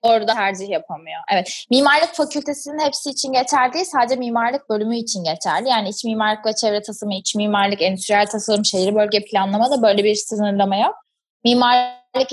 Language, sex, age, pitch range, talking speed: Turkish, female, 20-39, 210-270 Hz, 165 wpm